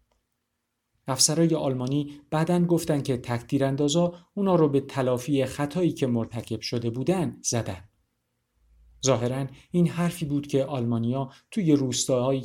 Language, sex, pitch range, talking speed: Persian, male, 115-150 Hz, 115 wpm